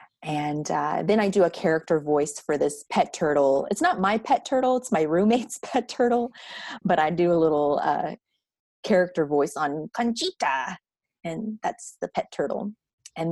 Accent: American